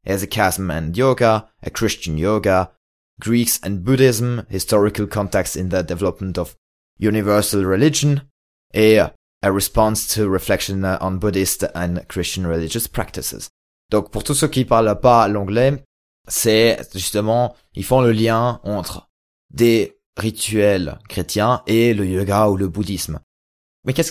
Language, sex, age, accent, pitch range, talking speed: French, male, 20-39, French, 95-120 Hz, 135 wpm